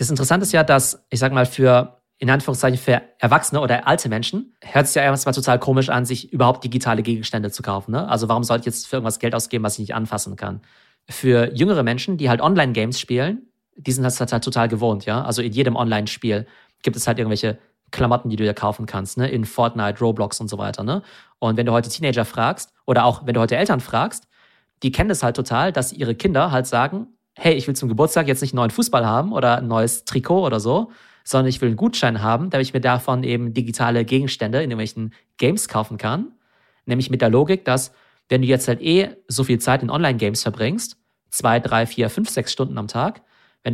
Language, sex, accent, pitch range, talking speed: German, male, German, 115-135 Hz, 225 wpm